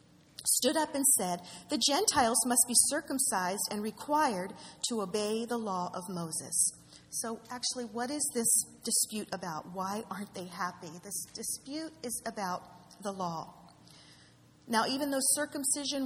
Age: 40-59